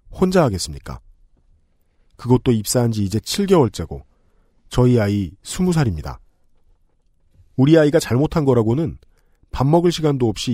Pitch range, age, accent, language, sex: 85-125 Hz, 40-59, native, Korean, male